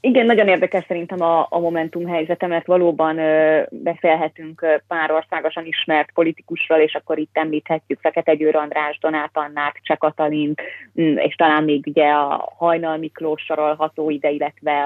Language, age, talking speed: Hungarian, 30-49, 135 wpm